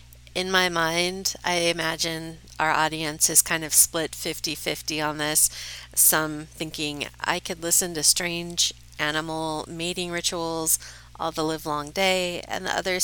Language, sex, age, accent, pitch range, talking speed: English, female, 40-59, American, 130-180 Hz, 150 wpm